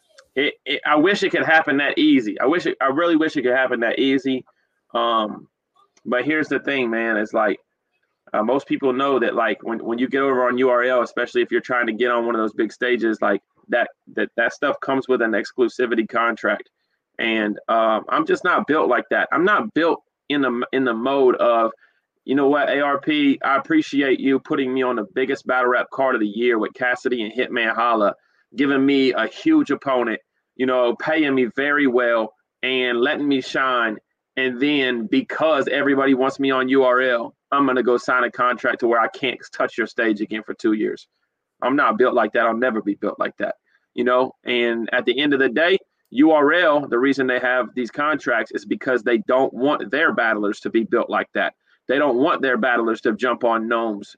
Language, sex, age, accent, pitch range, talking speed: English, male, 30-49, American, 120-140 Hz, 215 wpm